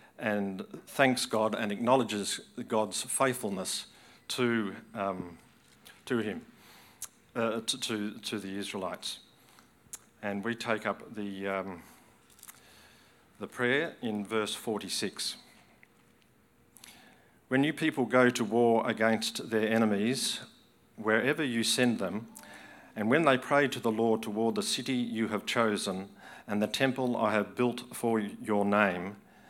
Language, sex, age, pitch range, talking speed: English, male, 50-69, 100-115 Hz, 130 wpm